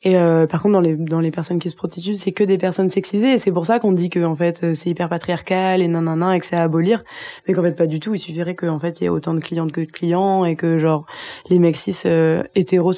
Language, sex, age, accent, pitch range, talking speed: French, female, 20-39, French, 170-190 Hz, 285 wpm